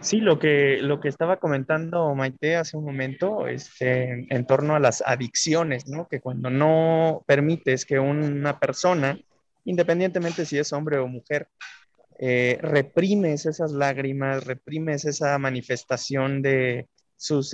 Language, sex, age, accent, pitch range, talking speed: Spanish, male, 20-39, Mexican, 130-155 Hz, 135 wpm